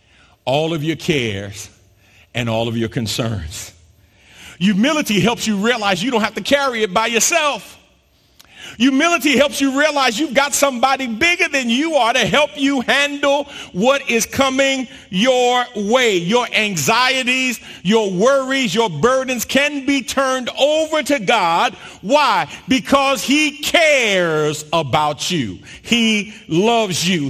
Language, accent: English, American